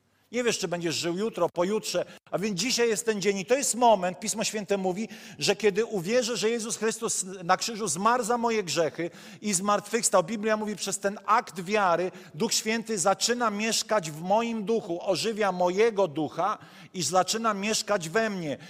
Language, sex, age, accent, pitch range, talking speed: Polish, male, 50-69, native, 185-225 Hz, 175 wpm